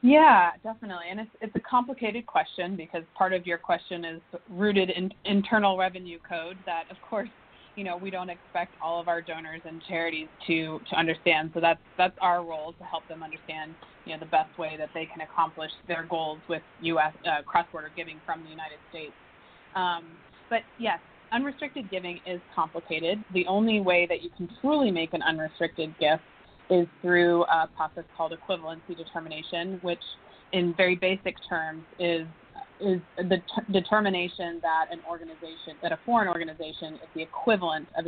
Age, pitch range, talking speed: 20-39, 165-190 Hz, 175 wpm